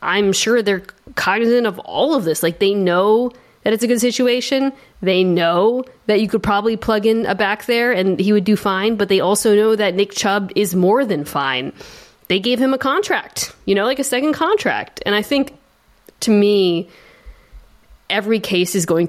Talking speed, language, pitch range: 200 wpm, English, 165-220 Hz